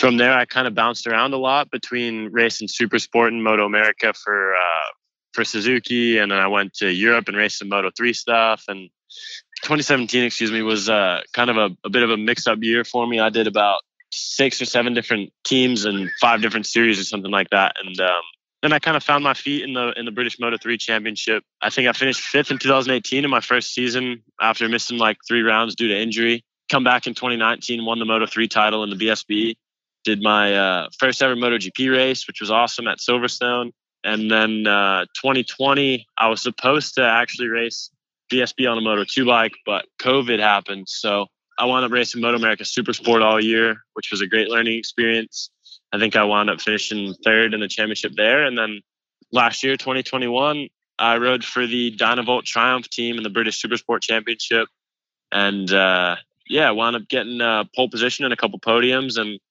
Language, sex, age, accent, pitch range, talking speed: English, male, 20-39, American, 110-125 Hz, 200 wpm